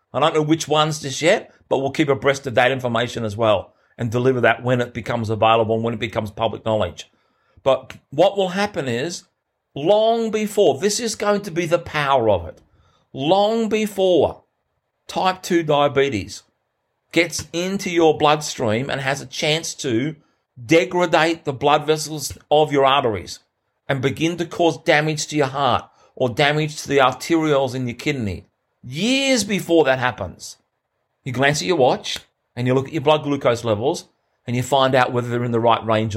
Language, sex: English, male